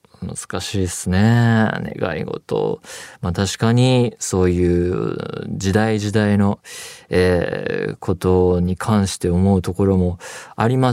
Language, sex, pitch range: Japanese, male, 90-120 Hz